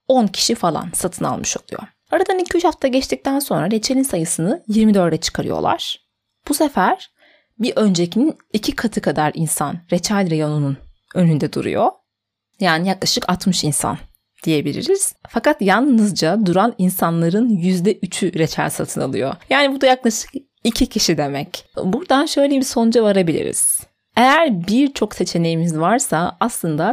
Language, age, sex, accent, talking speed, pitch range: Turkish, 30-49, female, native, 125 wpm, 180-250 Hz